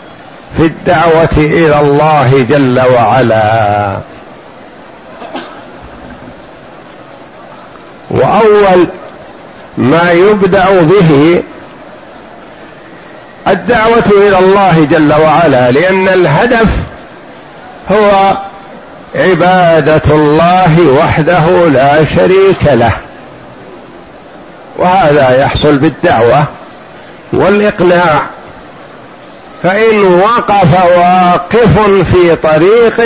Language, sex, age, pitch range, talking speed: Arabic, male, 50-69, 155-195 Hz, 60 wpm